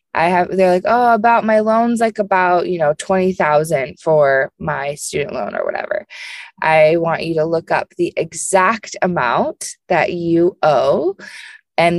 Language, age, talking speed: English, 20-39, 160 wpm